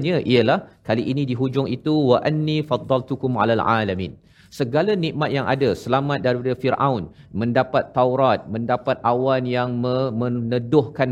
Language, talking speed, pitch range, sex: Malayalam, 135 wpm, 120-150 Hz, male